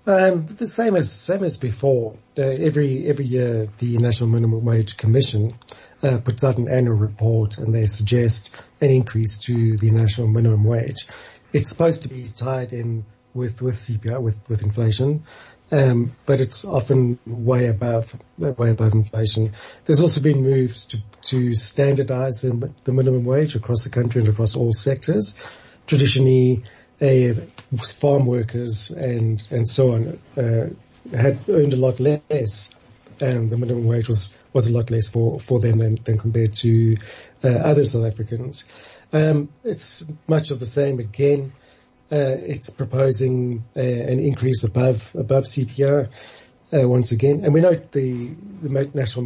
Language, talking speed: English, 160 wpm